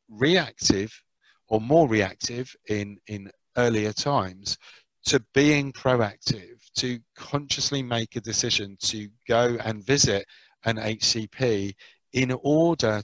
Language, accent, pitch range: English, British, 105-130 Hz